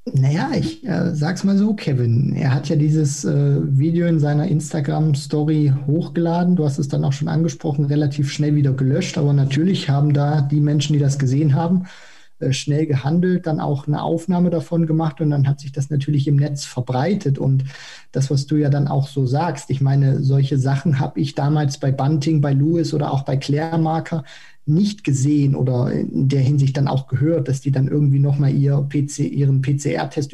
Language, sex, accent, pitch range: German, male, German, 140-160 Hz